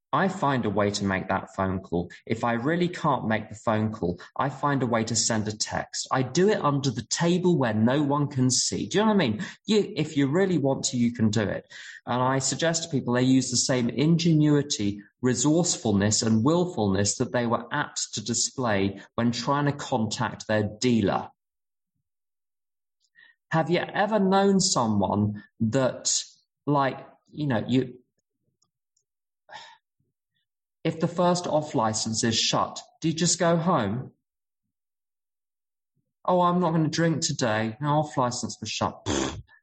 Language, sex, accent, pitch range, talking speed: English, male, British, 110-155 Hz, 165 wpm